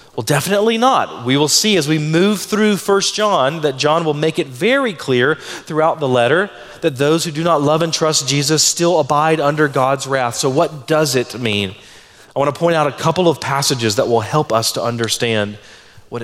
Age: 30-49